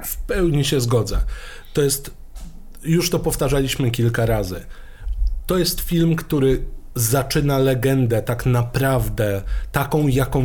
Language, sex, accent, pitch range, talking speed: Polish, male, native, 120-165 Hz, 120 wpm